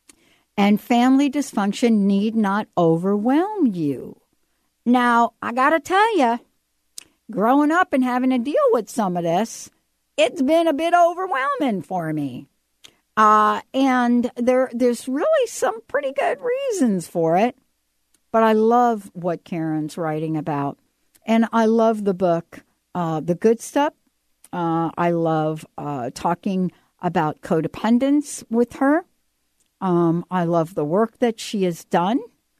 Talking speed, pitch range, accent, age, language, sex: 140 wpm, 170-260 Hz, American, 60-79, English, female